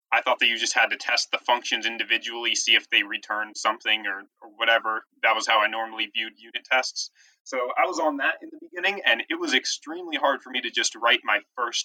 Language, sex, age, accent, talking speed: English, male, 20-39, American, 240 wpm